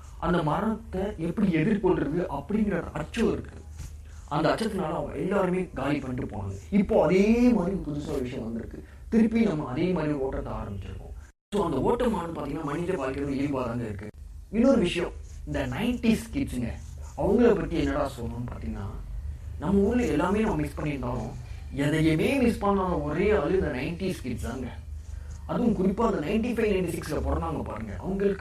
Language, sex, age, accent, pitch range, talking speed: Tamil, male, 30-49, native, 120-195 Hz, 125 wpm